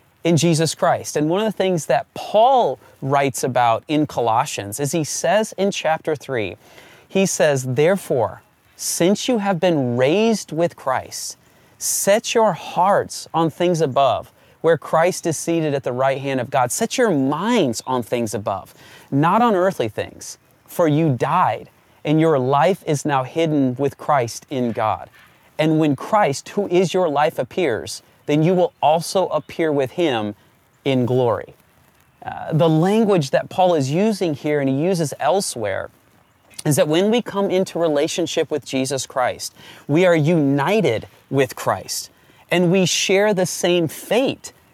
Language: English